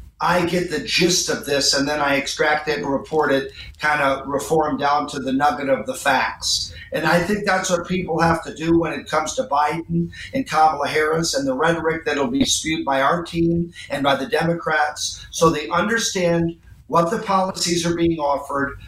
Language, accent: English, American